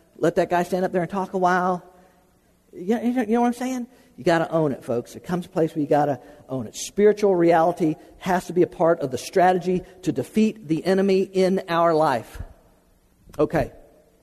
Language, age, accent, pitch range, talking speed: English, 50-69, American, 160-215 Hz, 220 wpm